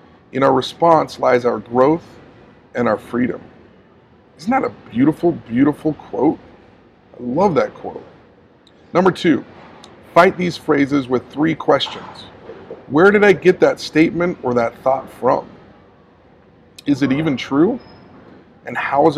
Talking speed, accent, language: 140 wpm, American, English